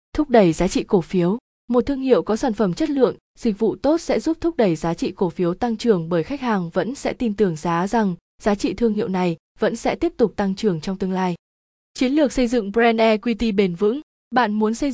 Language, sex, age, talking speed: Vietnamese, female, 20-39, 245 wpm